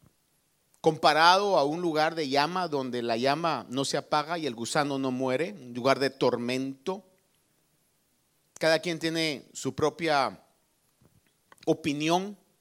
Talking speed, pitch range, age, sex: 130 wpm, 135-185 Hz, 50-69, male